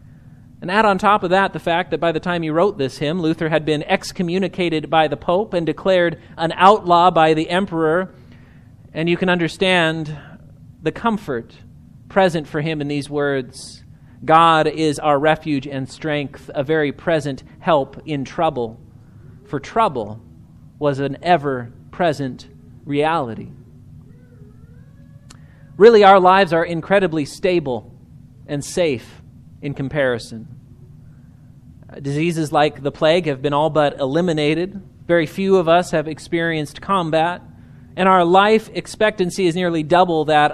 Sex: male